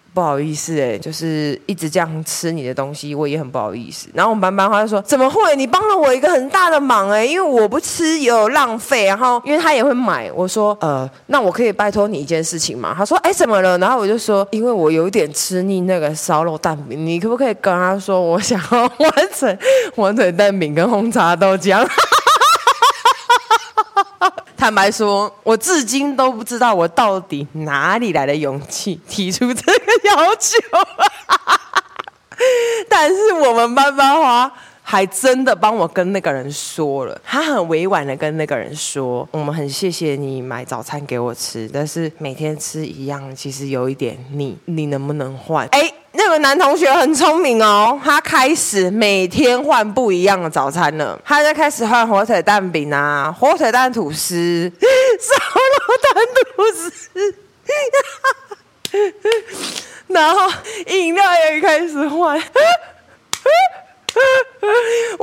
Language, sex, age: Chinese, female, 20-39